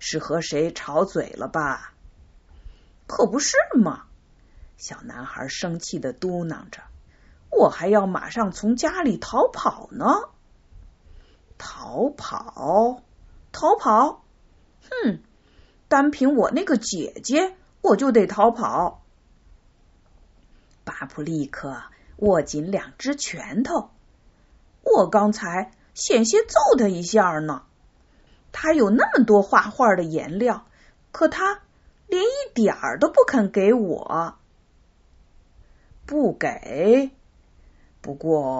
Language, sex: Chinese, female